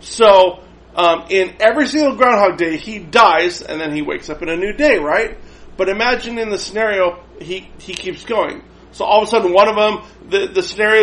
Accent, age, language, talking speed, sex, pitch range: American, 40-59, English, 210 wpm, male, 185-285 Hz